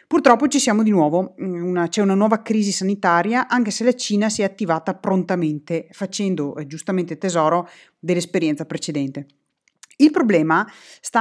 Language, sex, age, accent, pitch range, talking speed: Italian, female, 30-49, native, 165-245 Hz, 150 wpm